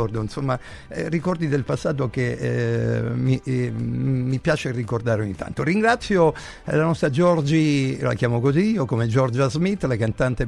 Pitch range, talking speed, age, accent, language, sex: 120-150 Hz, 150 wpm, 50-69, native, Italian, male